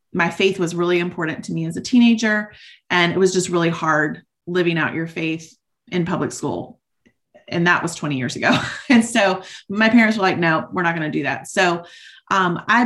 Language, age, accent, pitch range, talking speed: English, 30-49, American, 170-205 Hz, 210 wpm